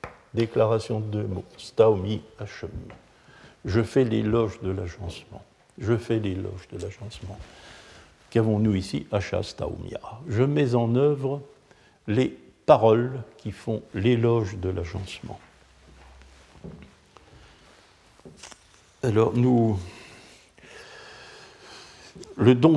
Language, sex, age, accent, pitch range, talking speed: French, male, 60-79, French, 95-125 Hz, 90 wpm